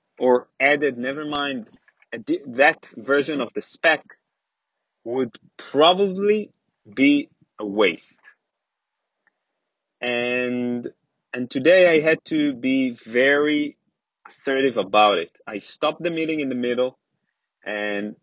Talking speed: 110 wpm